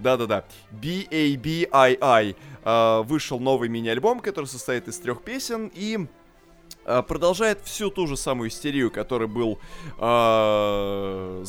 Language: Russian